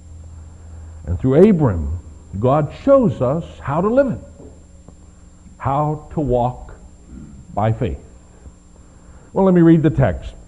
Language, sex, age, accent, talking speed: English, male, 60-79, American, 120 wpm